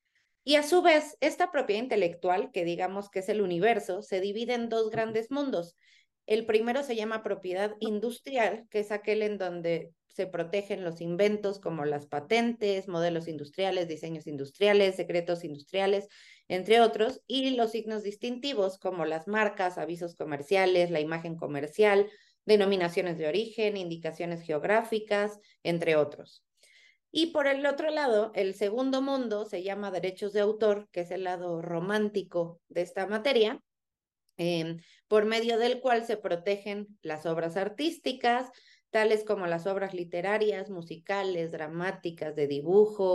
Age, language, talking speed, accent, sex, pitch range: 30-49, Spanish, 145 wpm, Mexican, female, 175-220 Hz